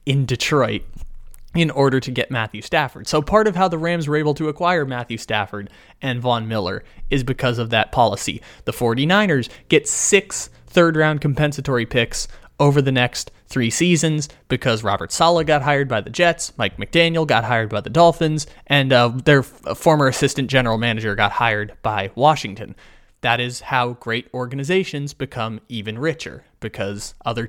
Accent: American